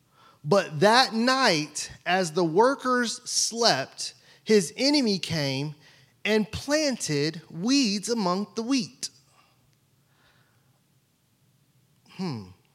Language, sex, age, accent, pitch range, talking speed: English, male, 30-49, American, 135-230 Hz, 80 wpm